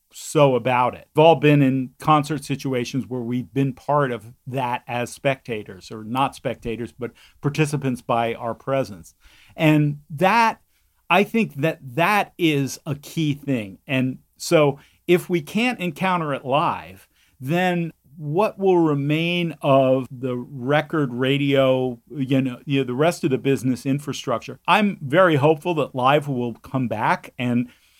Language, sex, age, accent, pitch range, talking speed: English, male, 40-59, American, 125-160 Hz, 150 wpm